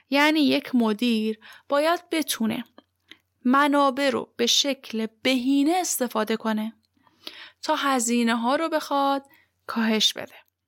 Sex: female